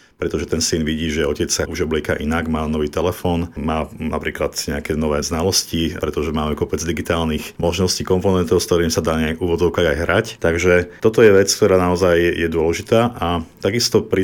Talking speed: 185 wpm